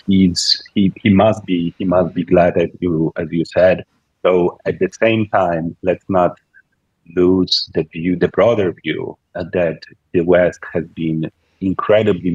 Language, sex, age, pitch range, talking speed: English, male, 40-59, 80-90 Hz, 160 wpm